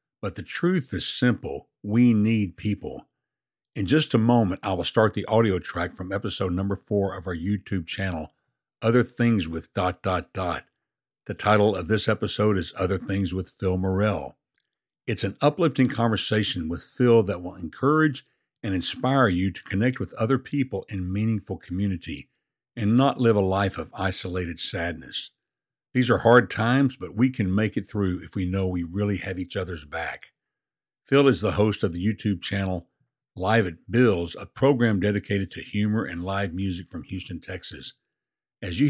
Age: 60-79